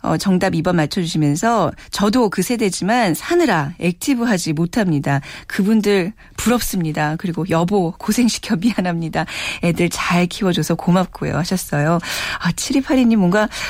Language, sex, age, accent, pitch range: Korean, female, 40-59, native, 175-240 Hz